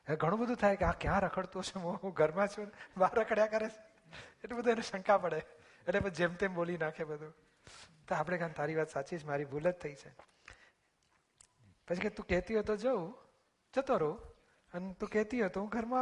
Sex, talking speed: male, 35 wpm